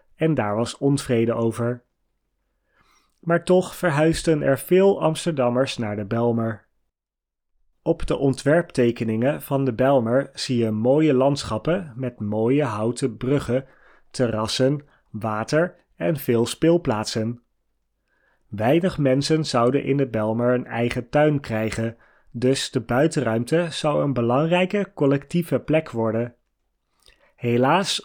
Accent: Dutch